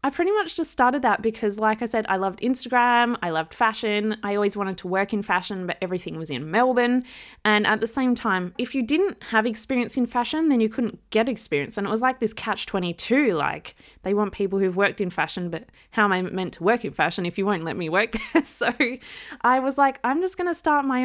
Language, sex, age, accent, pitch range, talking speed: English, female, 20-39, Australian, 185-240 Hz, 240 wpm